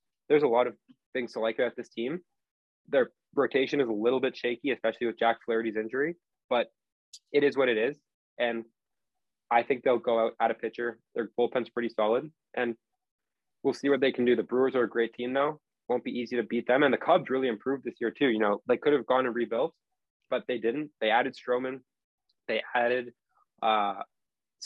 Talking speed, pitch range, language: 210 wpm, 110-130 Hz, English